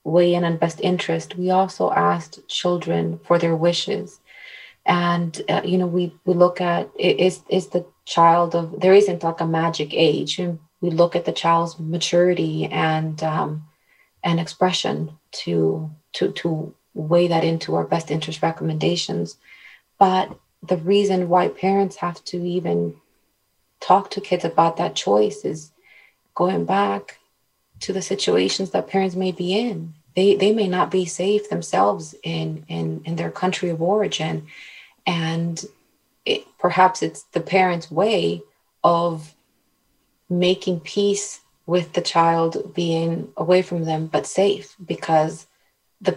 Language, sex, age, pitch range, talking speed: English, female, 30-49, 160-185 Hz, 145 wpm